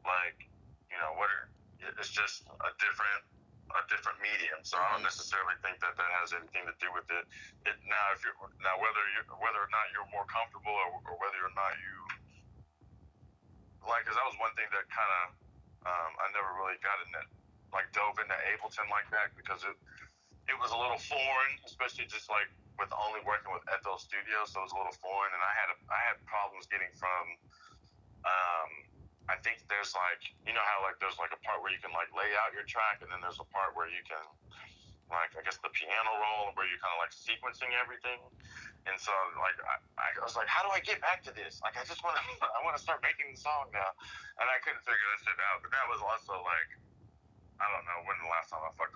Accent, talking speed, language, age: American, 225 wpm, English, 20-39